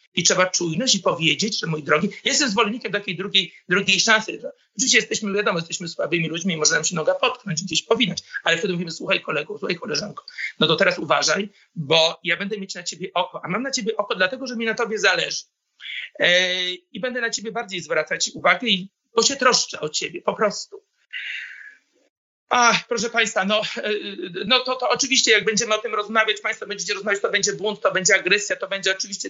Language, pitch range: Polish, 185-230 Hz